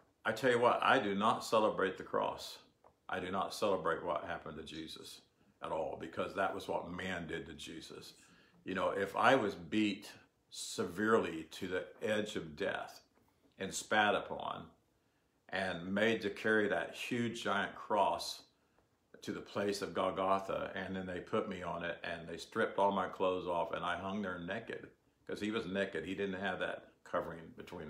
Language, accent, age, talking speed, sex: English, American, 50-69, 185 wpm, male